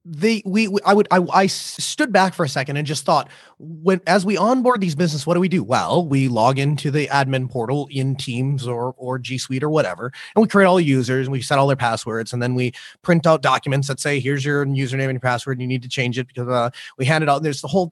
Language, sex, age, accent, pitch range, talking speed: English, male, 30-49, American, 140-200 Hz, 275 wpm